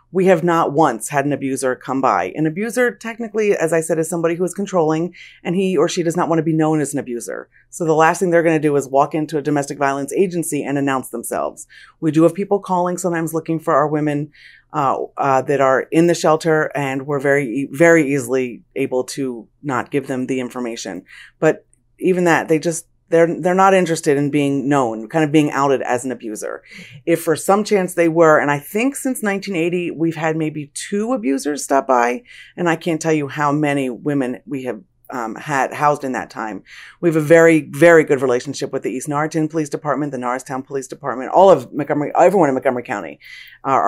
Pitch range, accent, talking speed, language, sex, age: 135-165 Hz, American, 215 wpm, English, female, 30-49